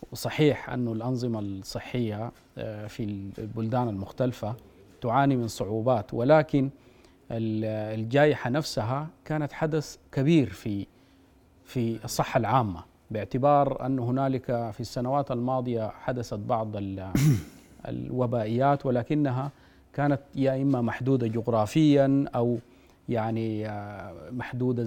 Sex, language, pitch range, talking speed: male, Arabic, 110-140 Hz, 90 wpm